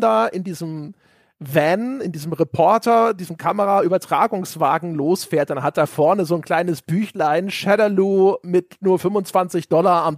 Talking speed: 135 wpm